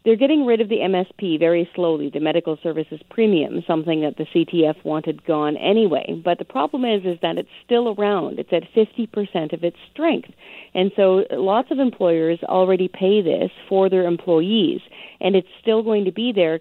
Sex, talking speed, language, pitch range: female, 190 wpm, English, 170-210 Hz